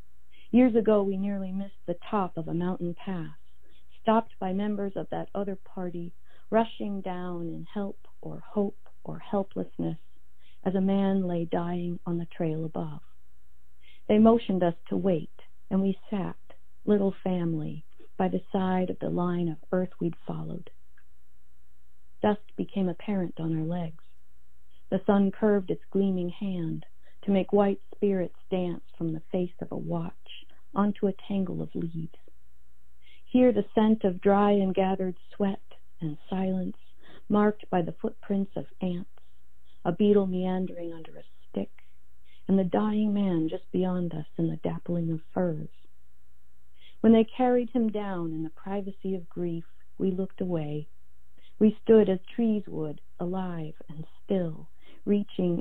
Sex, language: female, English